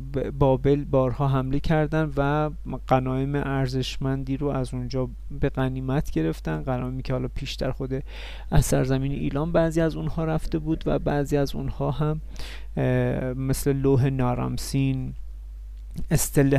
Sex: male